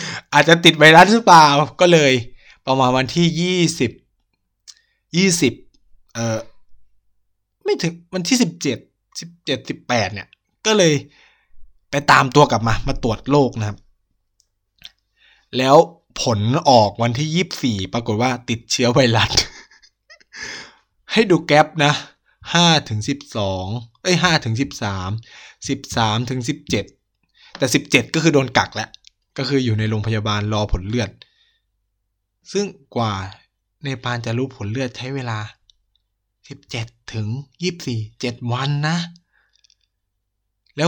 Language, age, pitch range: Thai, 20-39, 105-150 Hz